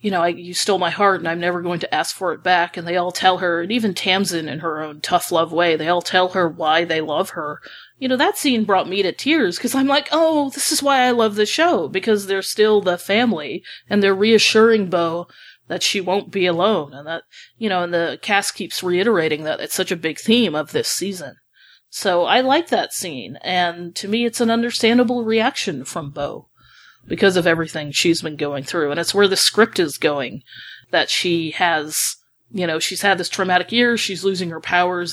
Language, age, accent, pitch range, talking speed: English, 30-49, American, 165-210 Hz, 225 wpm